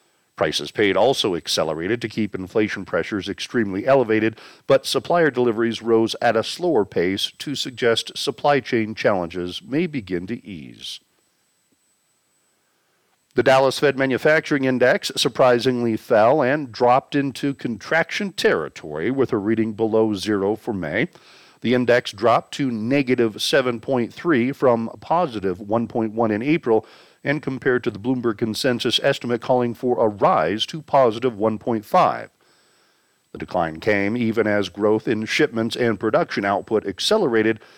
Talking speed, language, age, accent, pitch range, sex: 130 wpm, English, 50-69, American, 110-140 Hz, male